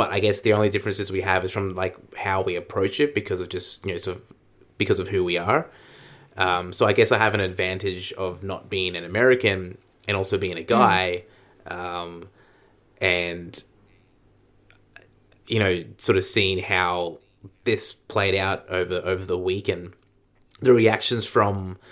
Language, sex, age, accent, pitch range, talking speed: English, male, 20-39, Australian, 95-110 Hz, 170 wpm